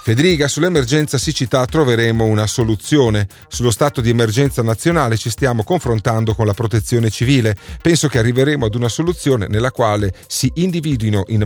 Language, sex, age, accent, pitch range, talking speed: Italian, male, 40-59, native, 105-145 Hz, 150 wpm